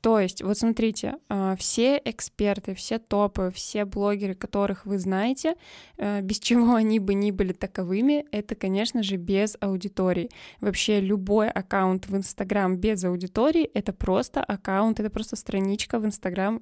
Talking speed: 145 wpm